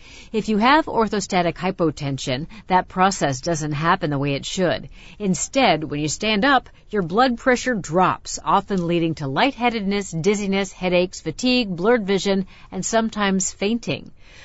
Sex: female